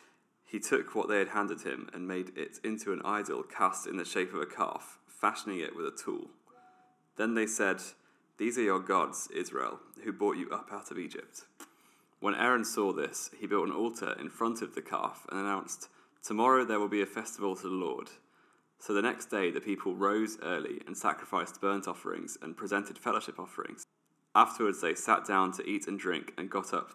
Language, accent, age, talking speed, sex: English, British, 20-39, 205 wpm, male